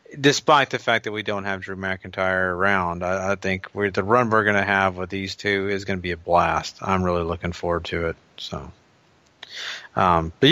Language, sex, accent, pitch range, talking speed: English, male, American, 100-125 Hz, 215 wpm